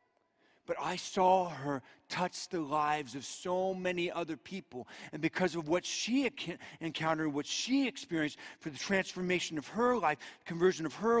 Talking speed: 160 wpm